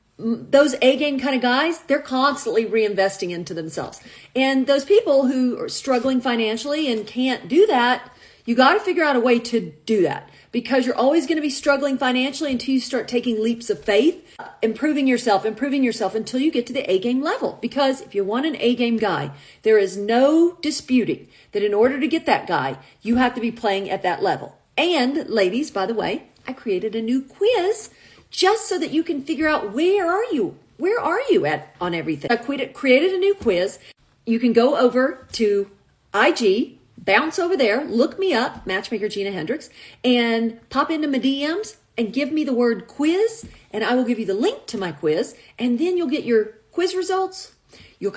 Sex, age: female, 40-59